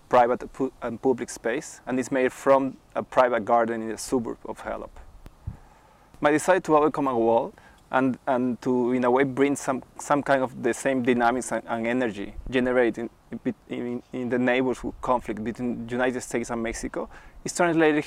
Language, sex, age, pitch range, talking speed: Danish, male, 20-39, 125-150 Hz, 180 wpm